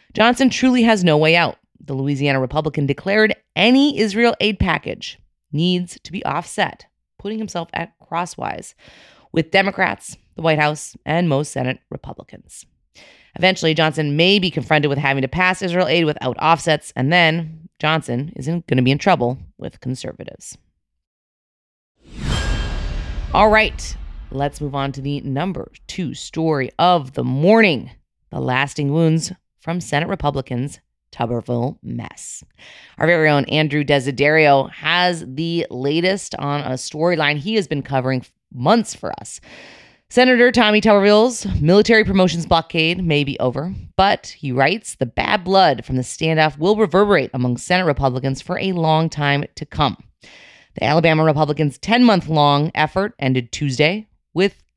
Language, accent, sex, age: English, American, female, 30-49